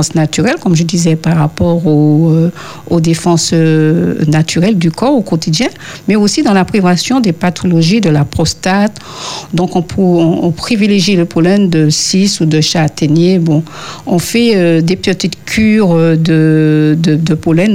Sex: female